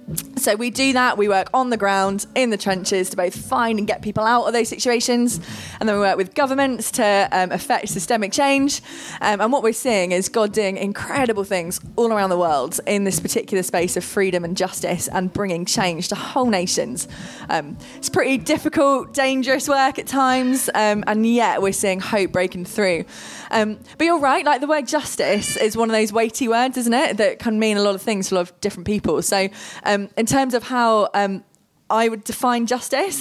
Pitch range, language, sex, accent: 195-245 Hz, English, female, British